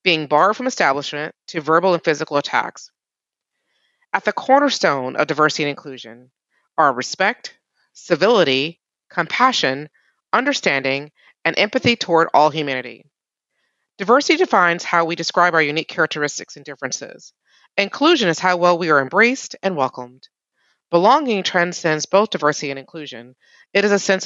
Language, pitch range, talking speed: English, 150-210 Hz, 135 wpm